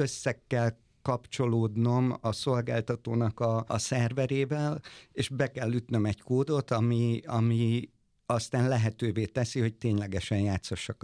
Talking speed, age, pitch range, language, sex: 120 wpm, 50-69, 110-130 Hz, Hungarian, male